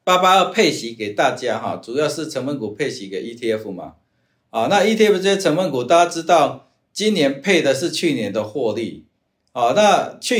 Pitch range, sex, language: 130-185 Hz, male, Chinese